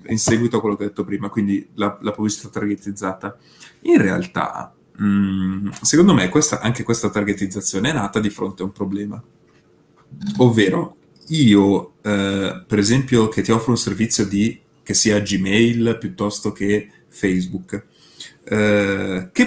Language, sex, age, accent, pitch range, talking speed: Italian, male, 30-49, native, 95-115 Hz, 150 wpm